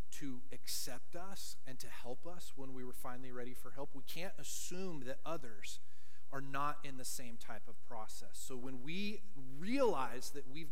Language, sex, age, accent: English, male, 40-59, American